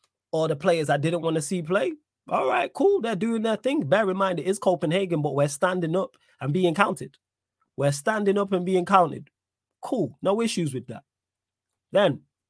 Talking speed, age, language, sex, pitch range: 195 wpm, 20-39, English, male, 135-195 Hz